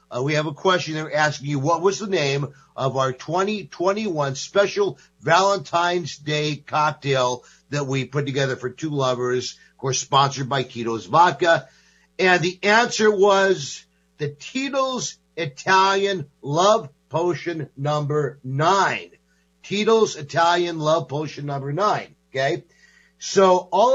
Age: 50-69